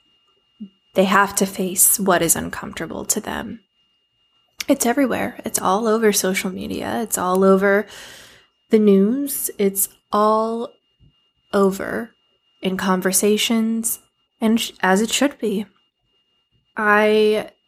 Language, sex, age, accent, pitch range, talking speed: English, female, 20-39, American, 195-260 Hz, 110 wpm